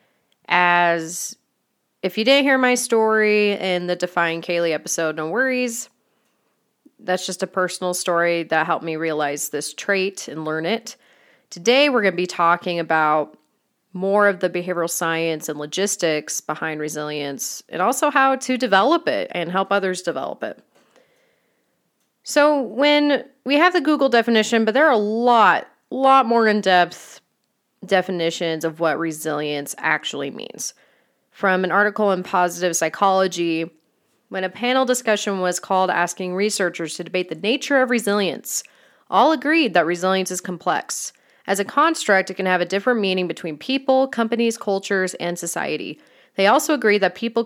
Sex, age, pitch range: female, 30-49, 170-230 Hz